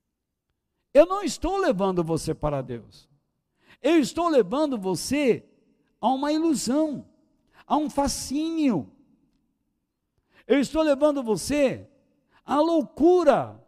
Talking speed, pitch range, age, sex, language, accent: 100 wpm, 175-295 Hz, 60-79, male, Portuguese, Brazilian